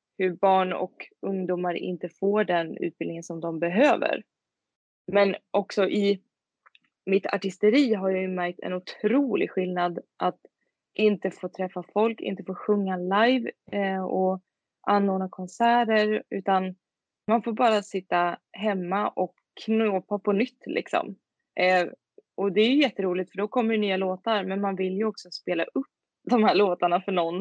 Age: 20-39